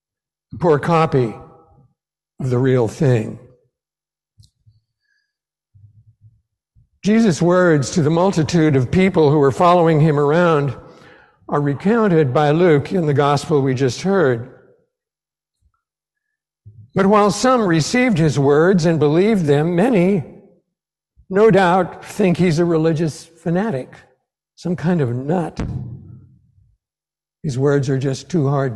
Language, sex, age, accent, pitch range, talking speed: English, male, 60-79, American, 135-185 Hz, 115 wpm